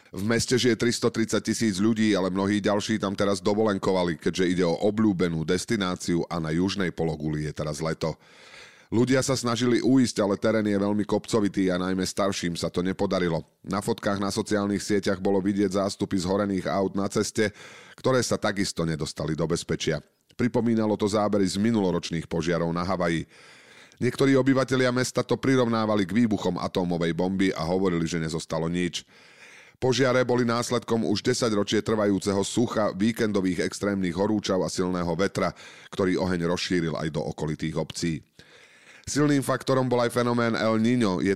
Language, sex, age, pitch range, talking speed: Slovak, male, 30-49, 90-110 Hz, 160 wpm